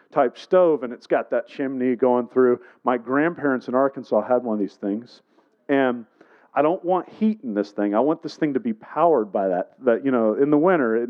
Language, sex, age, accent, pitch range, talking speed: English, male, 40-59, American, 115-150 Hz, 225 wpm